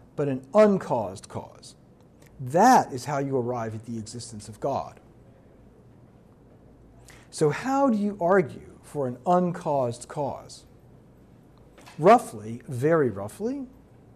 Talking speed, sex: 110 wpm, male